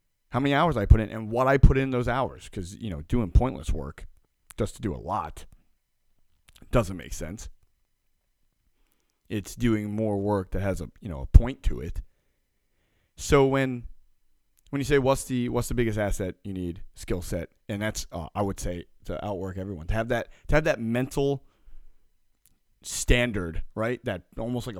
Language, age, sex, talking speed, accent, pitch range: English, 30-49, male, 185 wpm, American, 90-120 Hz